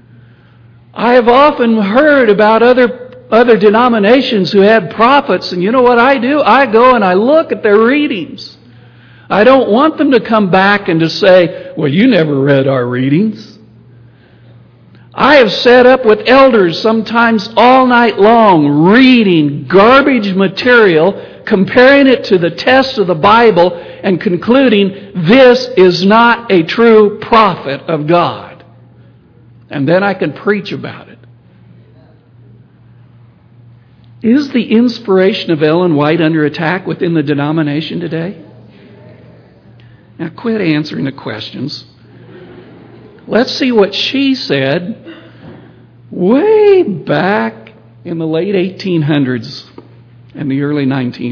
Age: 60-79